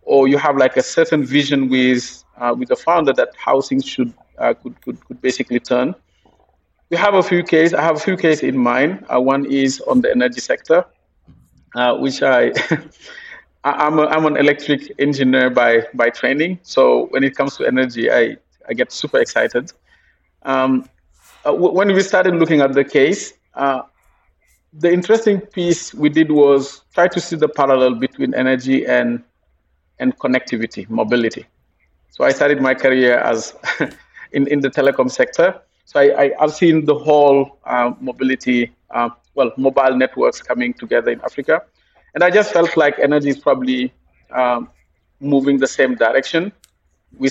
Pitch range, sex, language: 130-175 Hz, male, English